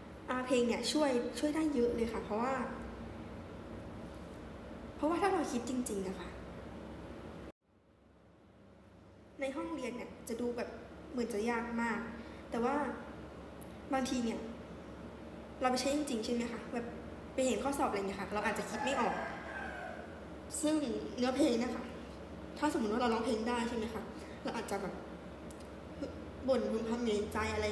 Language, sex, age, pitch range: Thai, female, 10-29, 215-260 Hz